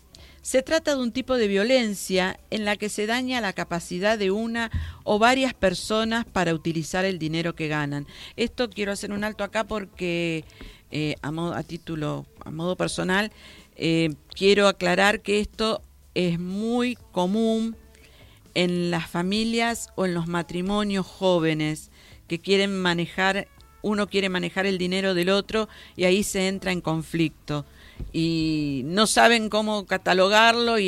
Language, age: Spanish, 50-69